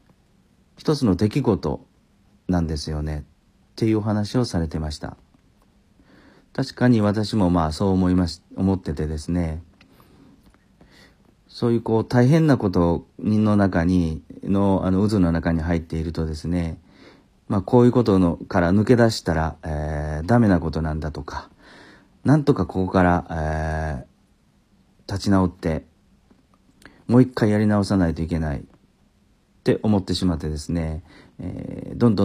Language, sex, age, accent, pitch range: Japanese, male, 40-59, native, 80-110 Hz